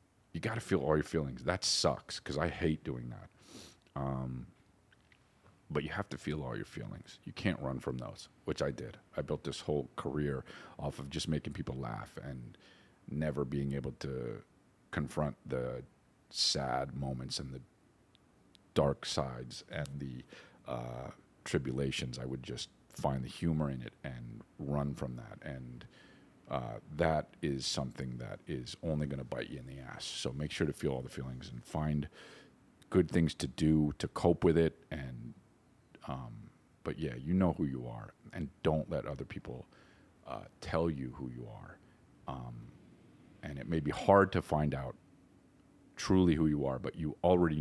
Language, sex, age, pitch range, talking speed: English, male, 40-59, 65-80 Hz, 175 wpm